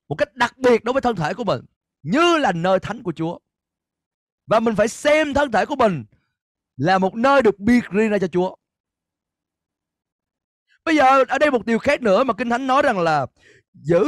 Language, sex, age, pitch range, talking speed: Vietnamese, male, 20-39, 160-265 Hz, 205 wpm